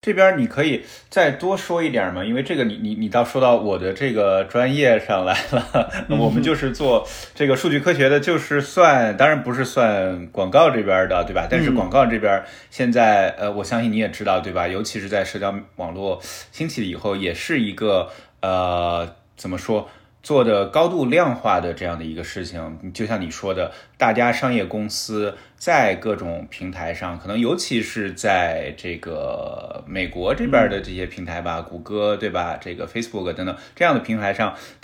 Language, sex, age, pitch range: Chinese, male, 20-39, 90-125 Hz